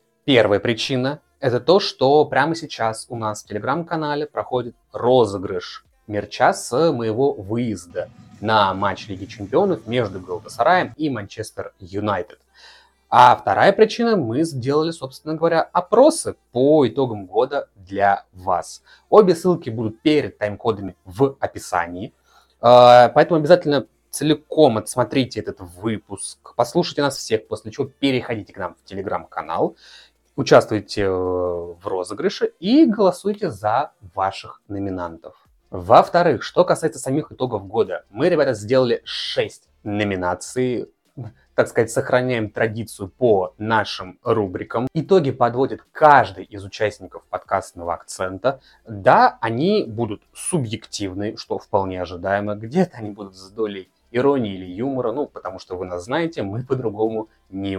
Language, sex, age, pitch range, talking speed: Russian, male, 20-39, 100-145 Hz, 125 wpm